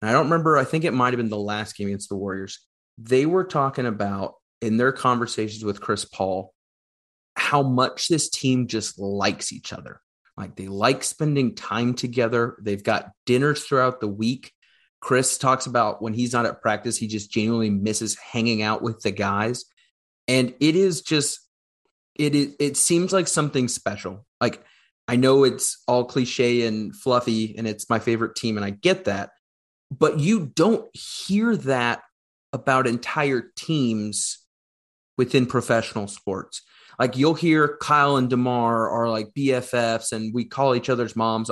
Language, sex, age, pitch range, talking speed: English, male, 30-49, 110-150 Hz, 170 wpm